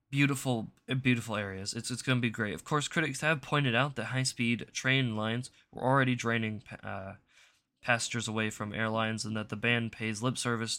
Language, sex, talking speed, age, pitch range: English, male, 190 wpm, 20-39, 110-130 Hz